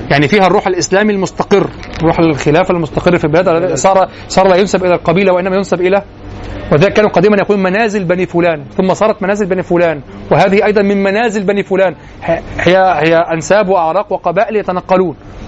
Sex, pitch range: male, 130-195 Hz